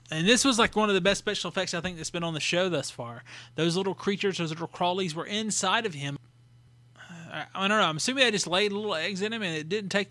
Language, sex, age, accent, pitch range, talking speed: English, male, 20-39, American, 140-185 Hz, 275 wpm